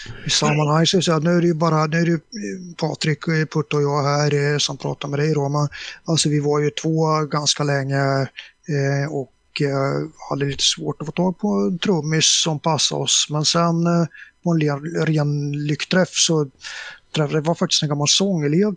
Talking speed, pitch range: 175 wpm, 145-175 Hz